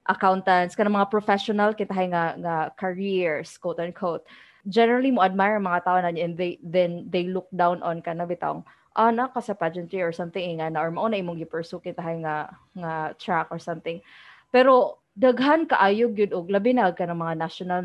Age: 20-39